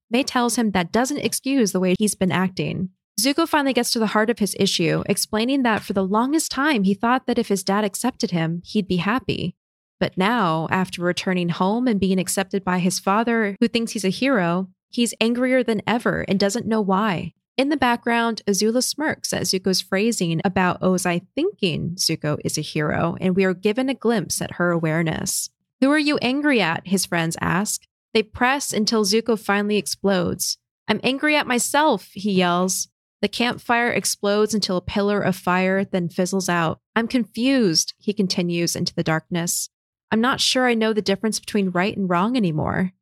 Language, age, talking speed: English, 20-39, 190 wpm